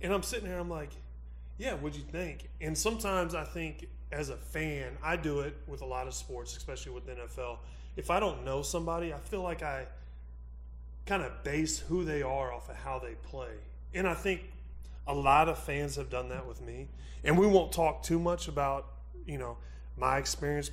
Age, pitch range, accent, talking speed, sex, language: 30-49, 115-155 Hz, American, 210 wpm, male, English